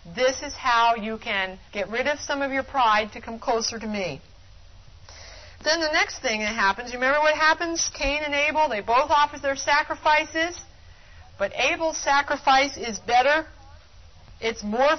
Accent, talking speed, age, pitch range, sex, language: American, 170 wpm, 50-69, 205-285 Hz, female, English